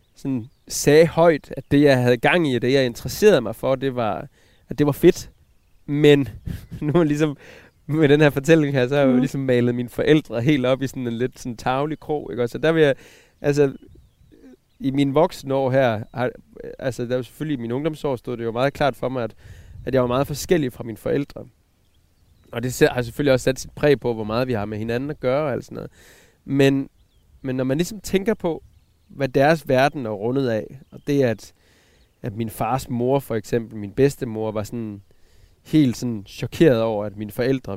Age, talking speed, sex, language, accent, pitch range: 20-39, 215 wpm, male, Danish, native, 110-140 Hz